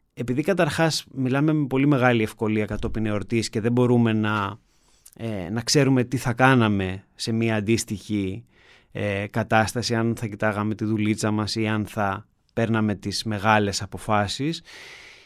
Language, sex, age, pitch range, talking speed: Greek, male, 30-49, 110-150 Hz, 145 wpm